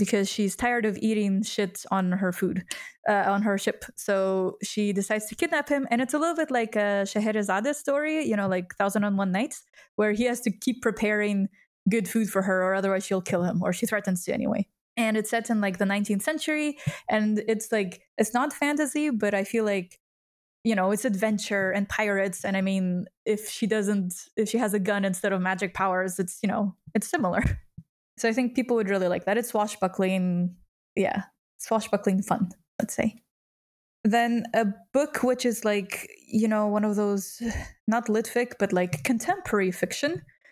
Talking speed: 195 wpm